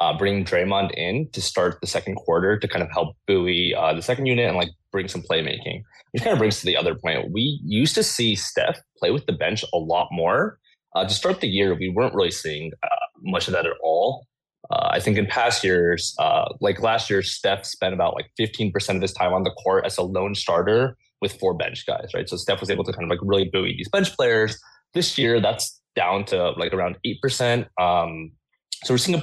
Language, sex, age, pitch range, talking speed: English, male, 20-39, 90-125 Hz, 240 wpm